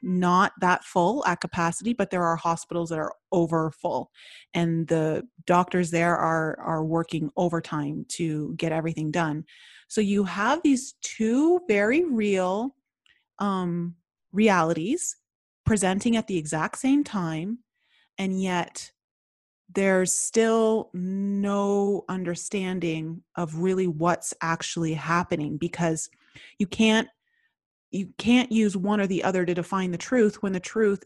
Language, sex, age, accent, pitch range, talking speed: English, female, 30-49, American, 170-220 Hz, 130 wpm